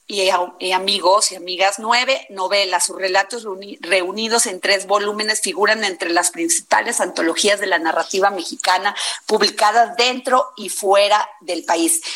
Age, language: 40-59, Spanish